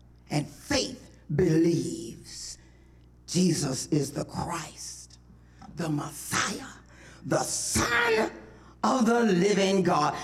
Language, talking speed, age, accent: English, 90 wpm, 40-59, American